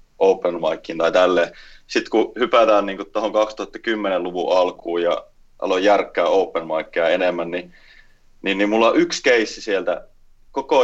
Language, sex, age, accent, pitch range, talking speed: Finnish, male, 20-39, native, 90-125 Hz, 135 wpm